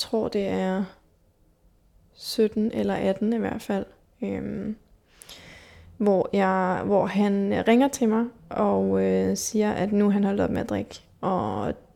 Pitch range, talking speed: 185-215 Hz, 160 wpm